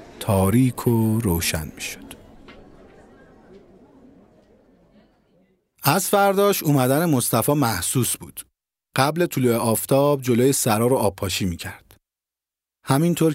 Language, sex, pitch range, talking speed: Persian, male, 100-140 Hz, 100 wpm